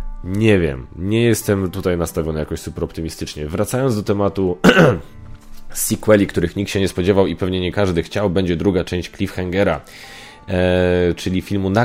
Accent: native